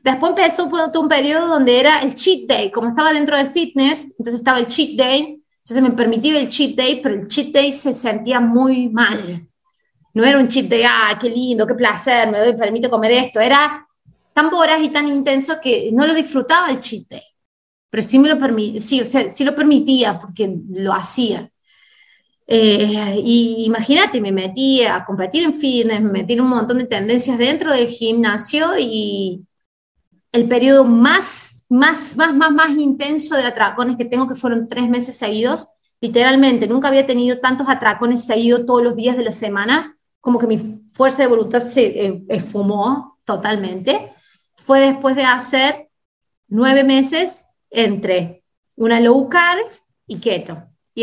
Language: Spanish